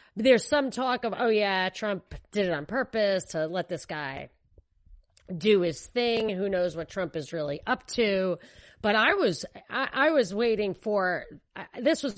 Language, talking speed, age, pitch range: English, 185 wpm, 30-49, 175-225 Hz